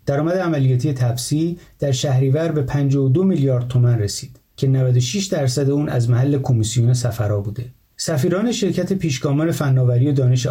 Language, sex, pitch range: Persian, male, 125-160 Hz